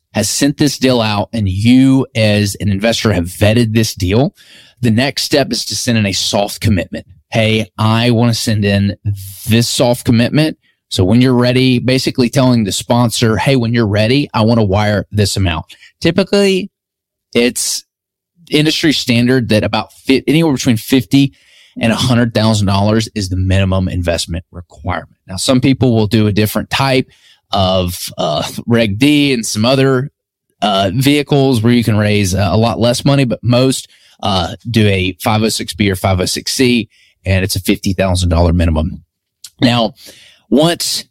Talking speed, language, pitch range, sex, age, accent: 160 wpm, English, 100-130 Hz, male, 30-49, American